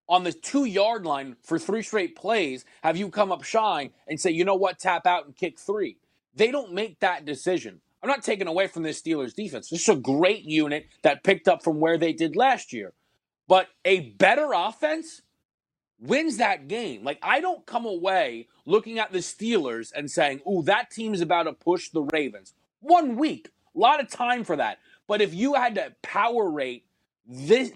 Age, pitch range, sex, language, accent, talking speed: 30-49, 170-245 Hz, male, English, American, 200 wpm